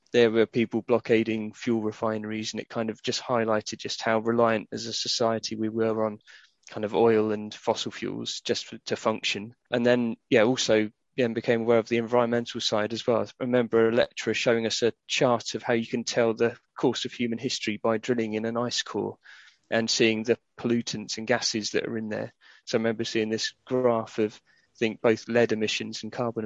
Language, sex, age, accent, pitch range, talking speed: English, male, 20-39, British, 110-120 Hz, 205 wpm